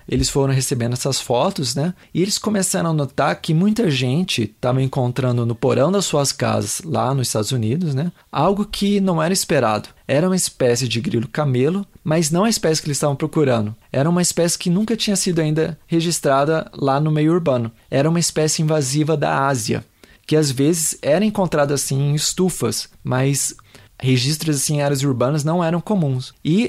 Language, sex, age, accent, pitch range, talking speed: Portuguese, male, 20-39, Brazilian, 135-165 Hz, 180 wpm